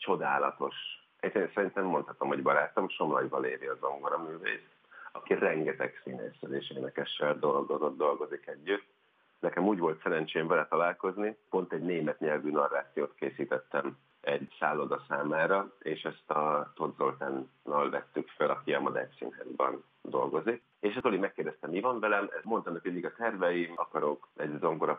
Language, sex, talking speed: Hungarian, male, 140 wpm